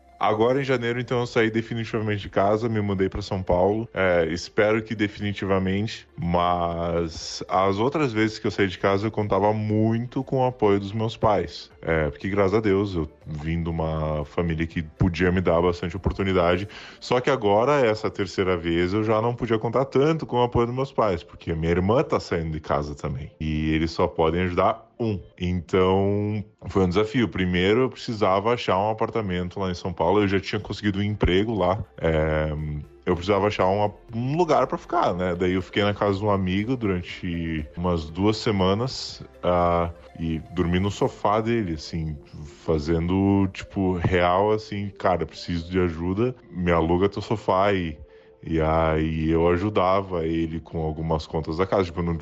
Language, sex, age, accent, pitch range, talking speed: Portuguese, male, 10-29, Brazilian, 85-105 Hz, 185 wpm